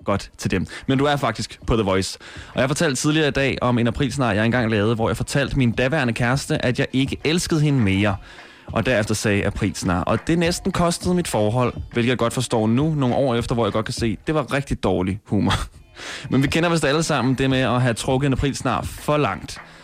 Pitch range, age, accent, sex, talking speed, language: 115-140 Hz, 20-39, native, male, 235 wpm, Danish